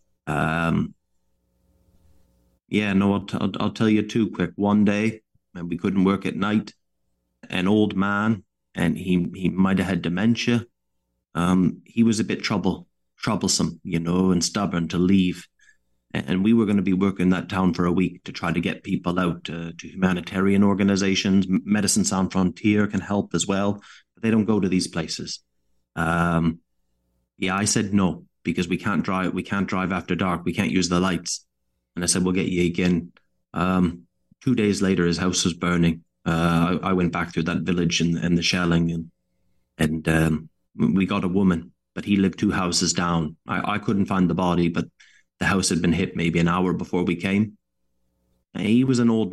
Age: 30-49